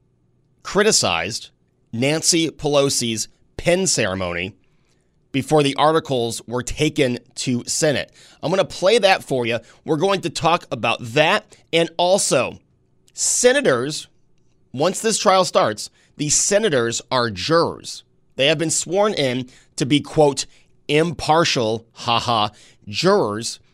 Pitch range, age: 125-160 Hz, 30-49